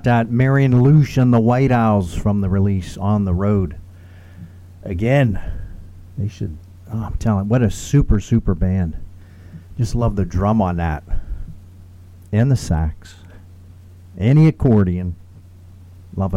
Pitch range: 90-115 Hz